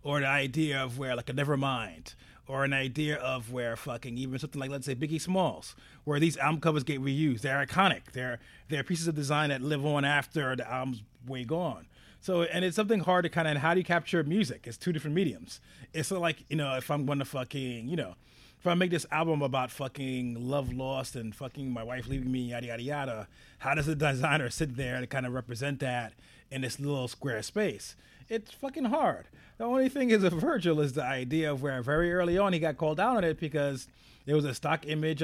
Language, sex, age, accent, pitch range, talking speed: English, male, 30-49, American, 130-170 Hz, 225 wpm